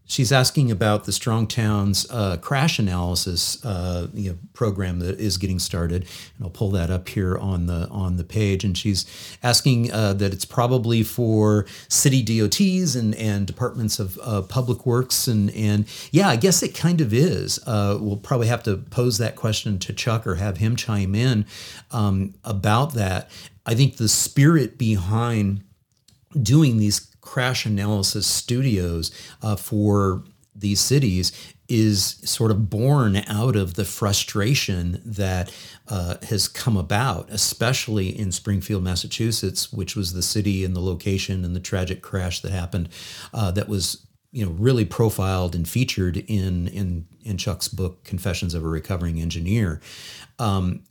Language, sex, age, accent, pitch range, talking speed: English, male, 50-69, American, 95-115 Hz, 160 wpm